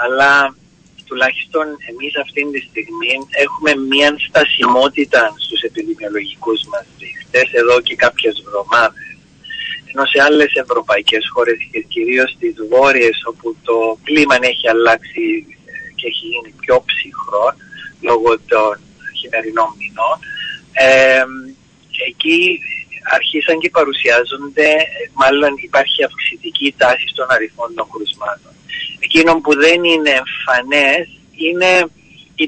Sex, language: male, Greek